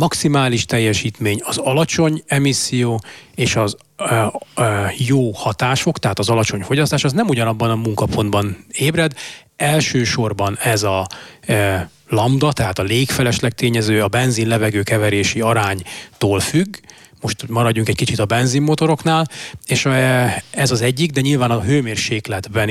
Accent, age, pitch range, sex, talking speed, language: Finnish, 30-49, 110-135 Hz, male, 125 wpm, English